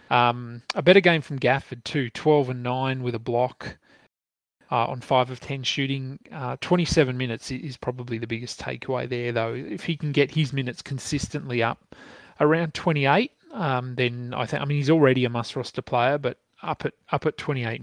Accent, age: Australian, 30-49